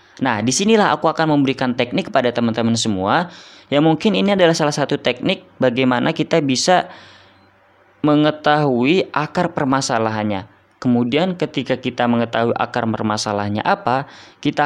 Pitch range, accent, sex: 110-150 Hz, native, female